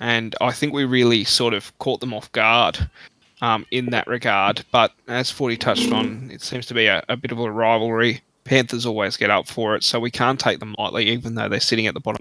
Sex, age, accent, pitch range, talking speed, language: male, 20-39, Australian, 110-125 Hz, 240 wpm, English